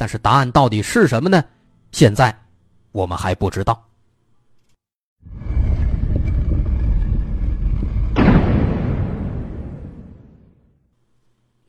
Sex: male